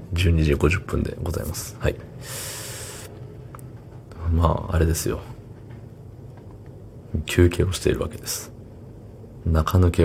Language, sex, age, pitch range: Japanese, male, 40-59, 85-110 Hz